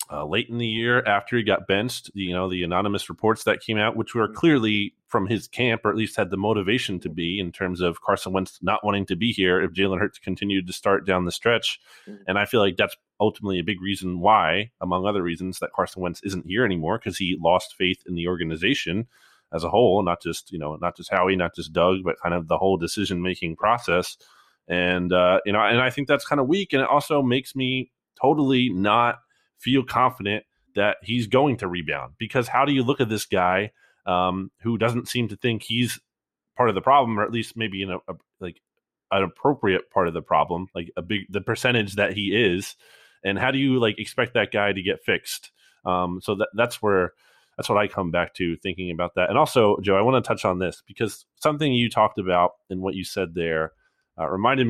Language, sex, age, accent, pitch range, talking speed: English, male, 30-49, American, 90-115 Hz, 230 wpm